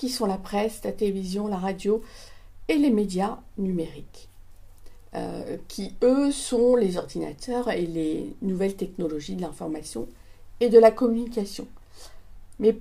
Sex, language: female, French